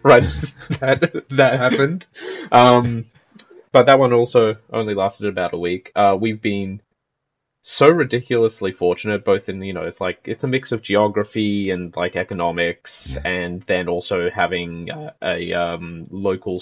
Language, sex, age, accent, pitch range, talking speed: English, male, 20-39, Australian, 95-120 Hz, 150 wpm